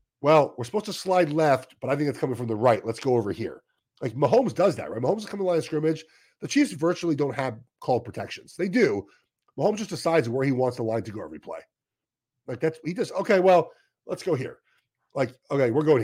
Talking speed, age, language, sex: 245 wpm, 40-59, English, male